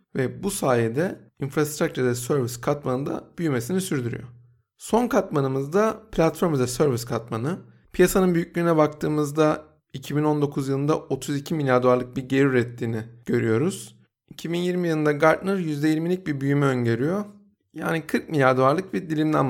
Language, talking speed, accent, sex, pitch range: Turkish, 130 wpm, native, male, 135-185 Hz